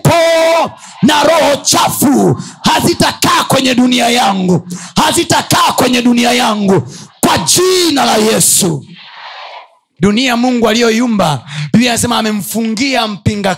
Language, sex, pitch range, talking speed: Swahili, male, 135-220 Hz, 95 wpm